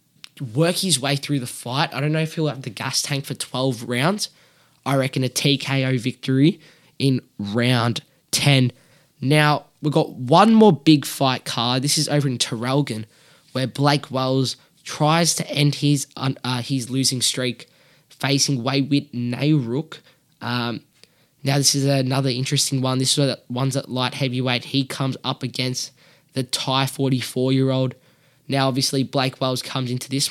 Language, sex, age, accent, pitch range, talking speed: English, male, 10-29, Australian, 125-150 Hz, 155 wpm